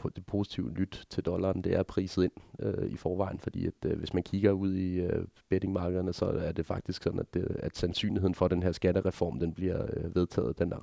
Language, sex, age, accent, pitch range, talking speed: Danish, male, 30-49, native, 90-100 Hz, 225 wpm